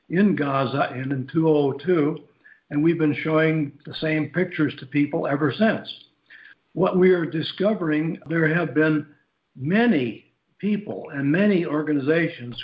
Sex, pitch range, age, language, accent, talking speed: male, 140-165 Hz, 60-79, English, American, 135 wpm